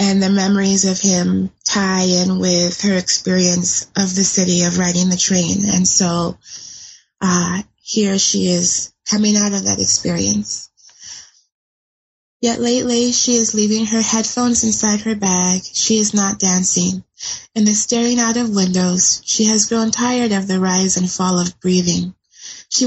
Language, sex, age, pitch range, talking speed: English, female, 20-39, 180-220 Hz, 155 wpm